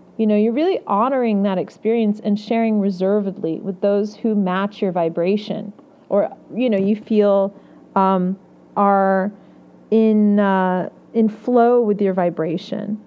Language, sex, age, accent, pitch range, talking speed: English, female, 40-59, American, 185-230 Hz, 140 wpm